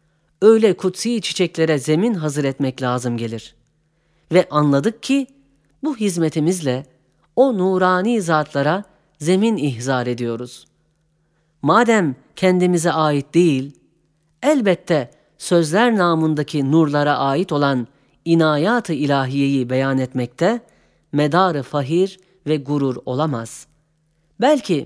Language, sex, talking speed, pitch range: Turkish, female, 95 wpm, 145-210 Hz